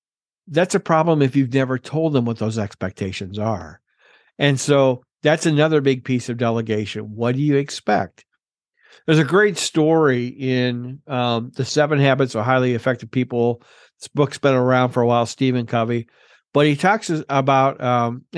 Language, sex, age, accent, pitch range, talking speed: English, male, 50-69, American, 125-155 Hz, 165 wpm